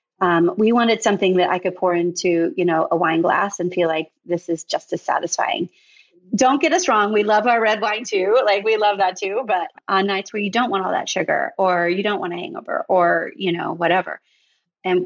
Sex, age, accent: female, 30-49, American